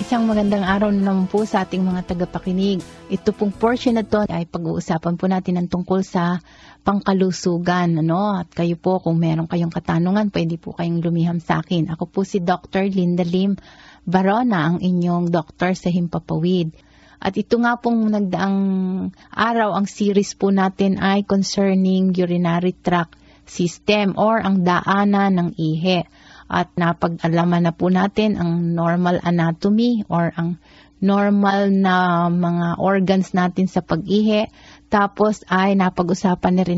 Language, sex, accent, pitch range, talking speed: Filipino, female, native, 175-200 Hz, 145 wpm